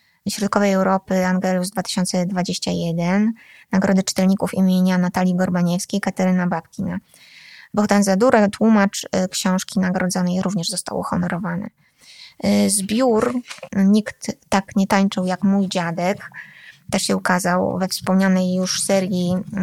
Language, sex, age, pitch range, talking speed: Polish, female, 20-39, 180-200 Hz, 105 wpm